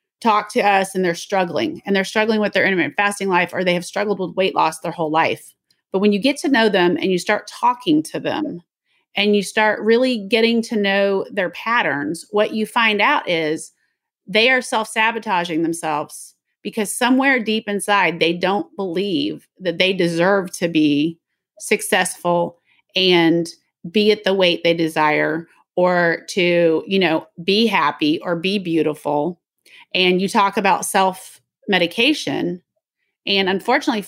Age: 30-49